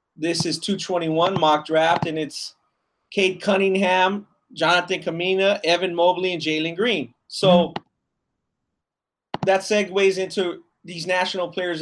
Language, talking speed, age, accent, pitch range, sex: English, 115 wpm, 30-49, American, 160-190 Hz, male